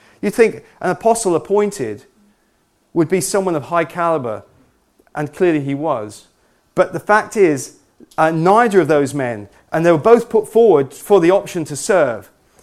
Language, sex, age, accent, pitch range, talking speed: English, male, 40-59, British, 165-205 Hz, 165 wpm